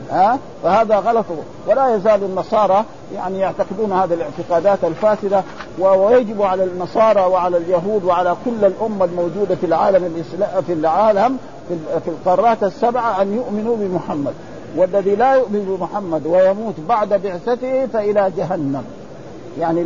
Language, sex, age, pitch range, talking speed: Arabic, male, 50-69, 180-215 Hz, 125 wpm